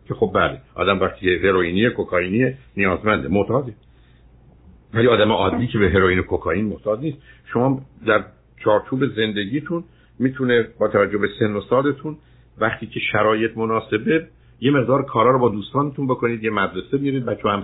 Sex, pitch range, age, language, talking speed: male, 100-130 Hz, 60-79, Persian, 150 wpm